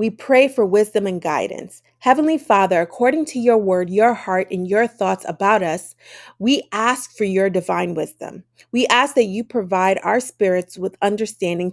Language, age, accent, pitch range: English, 30-49, American, 190-240 Hz